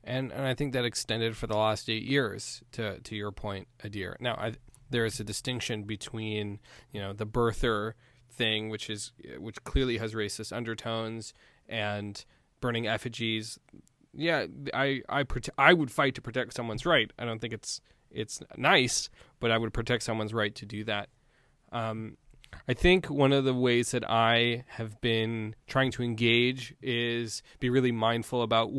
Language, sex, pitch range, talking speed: English, male, 115-135 Hz, 175 wpm